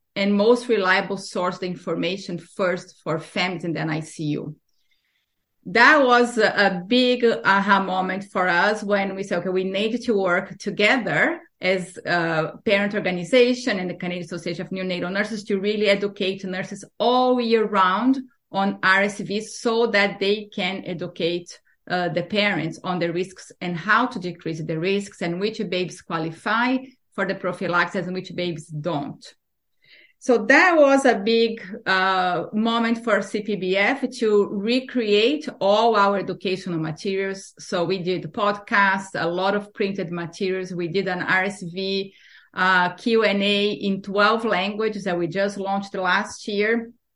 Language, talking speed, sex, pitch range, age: English, 150 wpm, female, 180-215 Hz, 30-49